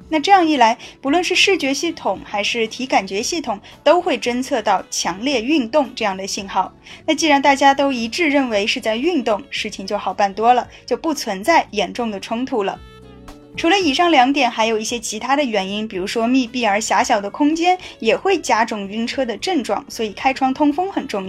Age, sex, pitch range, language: 10-29, female, 215-300 Hz, Chinese